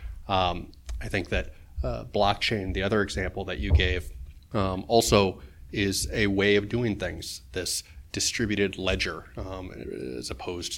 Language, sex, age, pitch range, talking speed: English, male, 30-49, 90-100 Hz, 145 wpm